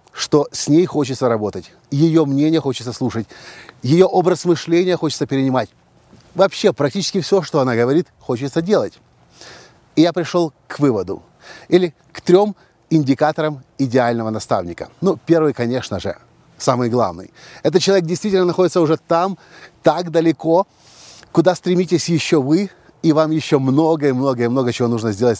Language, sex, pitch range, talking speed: Russian, male, 125-165 Hz, 145 wpm